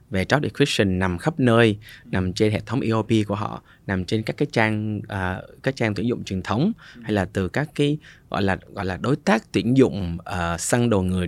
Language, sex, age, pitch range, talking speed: Vietnamese, male, 20-39, 100-135 Hz, 230 wpm